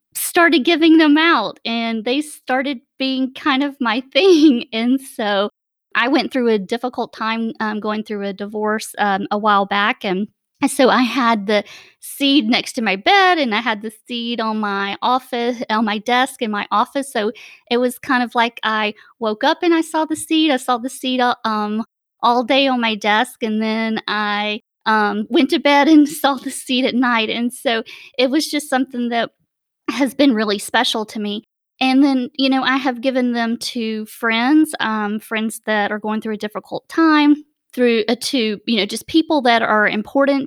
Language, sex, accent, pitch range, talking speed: English, female, American, 215-270 Hz, 195 wpm